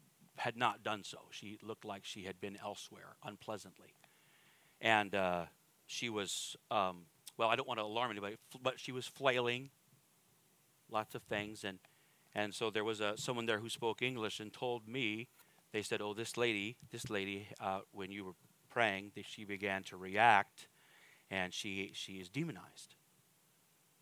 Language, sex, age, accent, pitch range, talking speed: English, male, 40-59, American, 100-130 Hz, 165 wpm